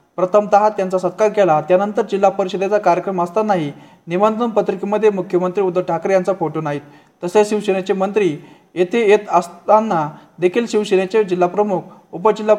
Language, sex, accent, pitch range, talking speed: Marathi, male, native, 175-215 Hz, 65 wpm